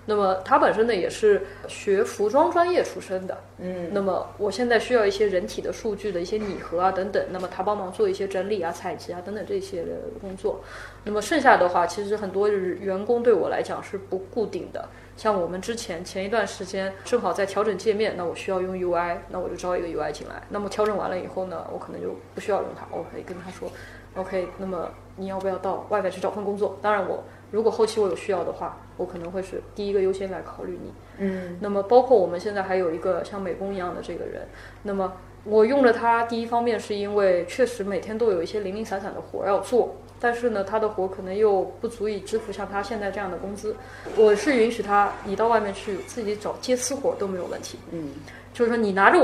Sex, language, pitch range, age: female, Chinese, 190-235 Hz, 20-39